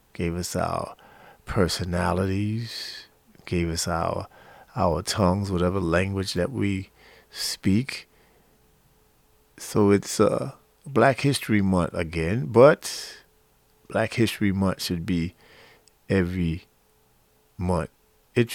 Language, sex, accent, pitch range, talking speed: English, male, American, 85-100 Hz, 100 wpm